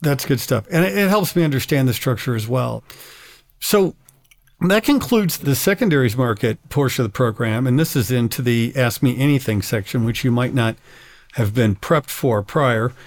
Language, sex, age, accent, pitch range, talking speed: English, male, 50-69, American, 125-150 Hz, 185 wpm